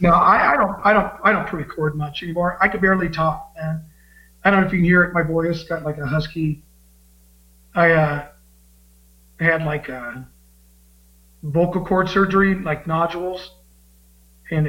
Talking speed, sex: 170 wpm, male